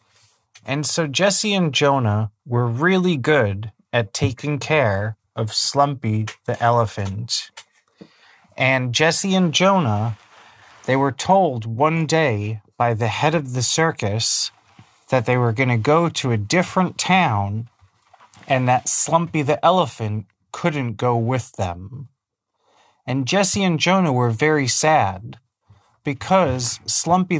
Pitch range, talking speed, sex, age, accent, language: 110-155 Hz, 125 wpm, male, 30-49, American, English